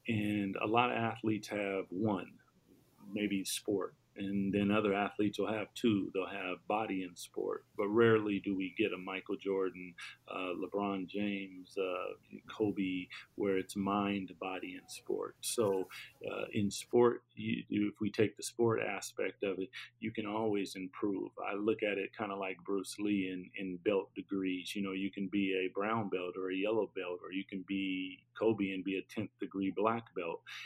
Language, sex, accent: English, male, American